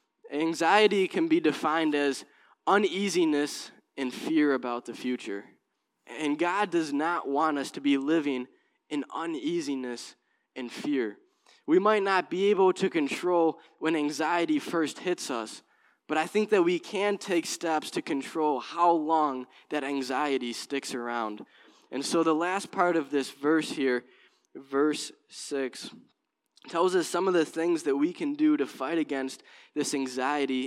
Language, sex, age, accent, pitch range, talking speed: English, male, 10-29, American, 130-170 Hz, 155 wpm